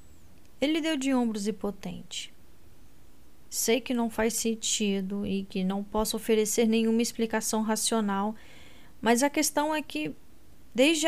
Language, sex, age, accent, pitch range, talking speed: Portuguese, female, 10-29, Brazilian, 200-250 Hz, 135 wpm